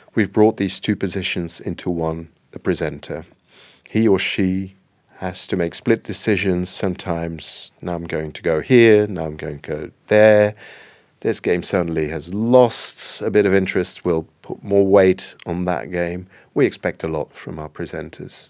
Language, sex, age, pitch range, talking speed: English, male, 40-59, 90-105 Hz, 170 wpm